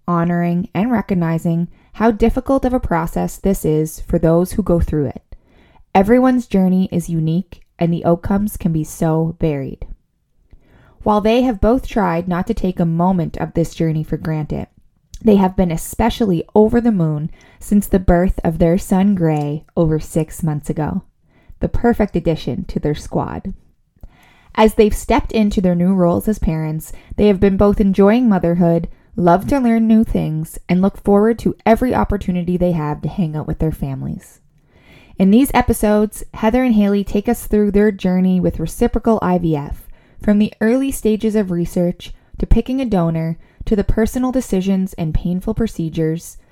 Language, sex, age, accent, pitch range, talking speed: English, female, 20-39, American, 170-220 Hz, 170 wpm